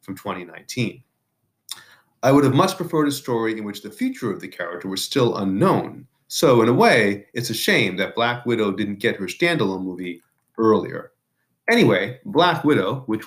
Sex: male